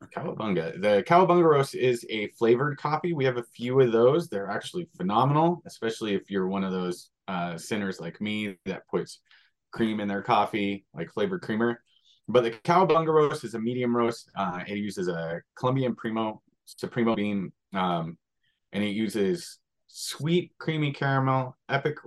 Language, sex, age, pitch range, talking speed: English, male, 30-49, 100-135 Hz, 165 wpm